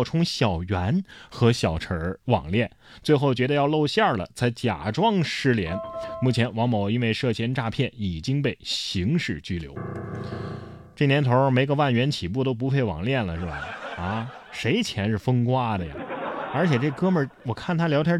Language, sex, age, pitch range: Chinese, male, 20-39, 110-170 Hz